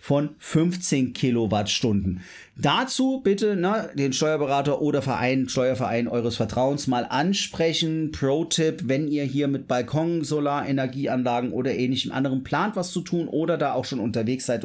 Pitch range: 130-165 Hz